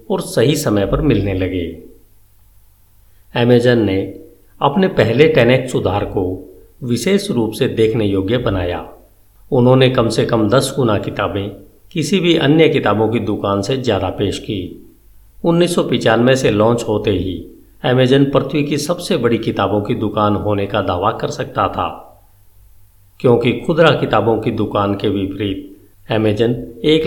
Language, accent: Hindi, native